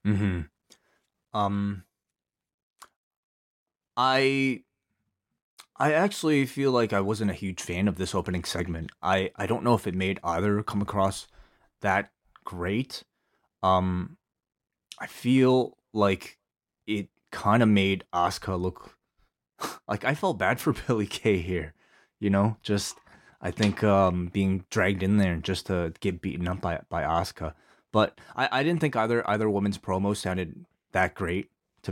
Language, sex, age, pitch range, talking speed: English, male, 20-39, 90-110 Hz, 145 wpm